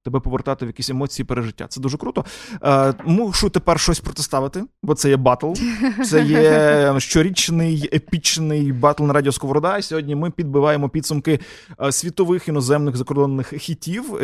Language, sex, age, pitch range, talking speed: Ukrainian, male, 20-39, 135-170 Hz, 145 wpm